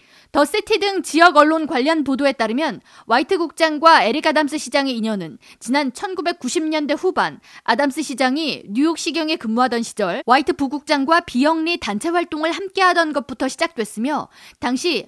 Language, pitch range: Korean, 255-330 Hz